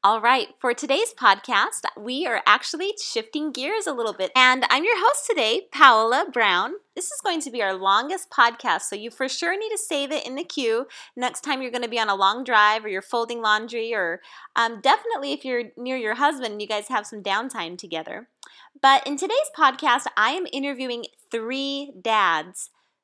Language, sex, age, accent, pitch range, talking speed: English, female, 30-49, American, 210-290 Hz, 195 wpm